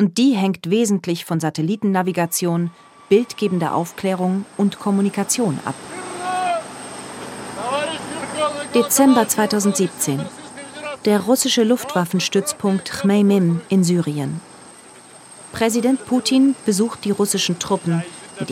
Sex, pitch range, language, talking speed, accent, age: female, 170-205 Hz, German, 85 wpm, German, 40-59